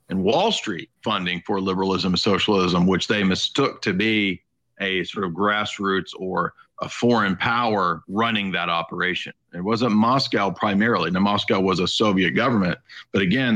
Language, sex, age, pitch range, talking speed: English, male, 40-59, 95-120 Hz, 160 wpm